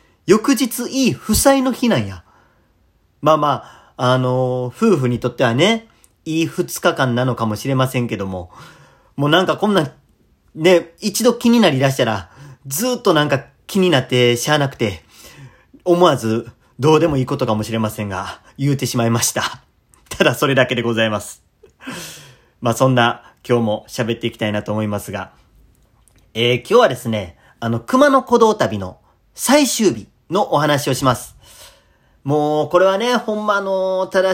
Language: Japanese